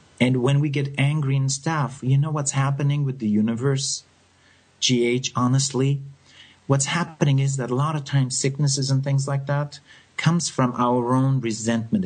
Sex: male